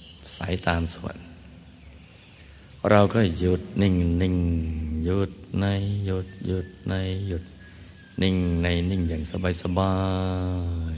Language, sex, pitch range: Thai, male, 80-90 Hz